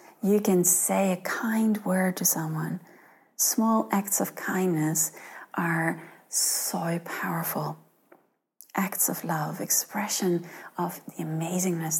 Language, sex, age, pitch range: English, female, 40-59, 175-225 Hz